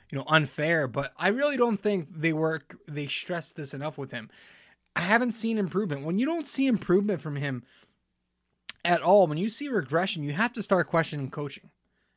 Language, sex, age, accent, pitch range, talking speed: English, male, 20-39, American, 145-190 Hz, 190 wpm